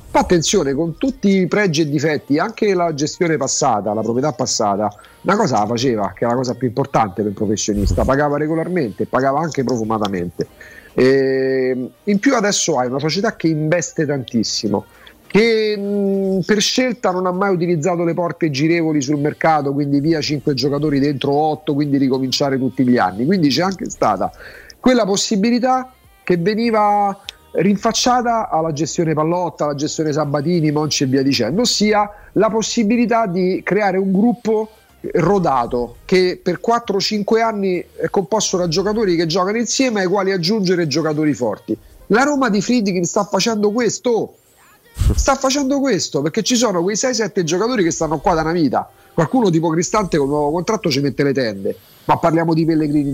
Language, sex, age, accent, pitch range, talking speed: Italian, male, 40-59, native, 145-205 Hz, 165 wpm